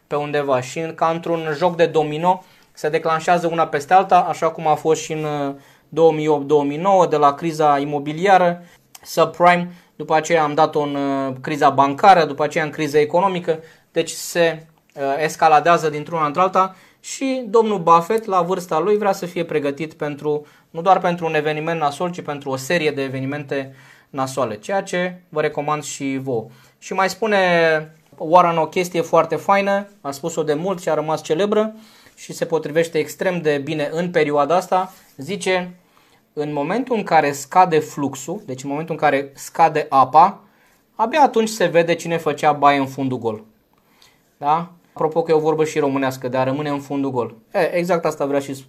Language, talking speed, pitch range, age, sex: Romanian, 170 wpm, 145-175 Hz, 20-39, male